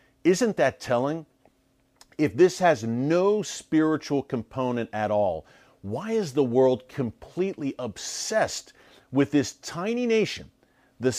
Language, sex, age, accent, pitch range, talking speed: English, male, 40-59, American, 130-185 Hz, 120 wpm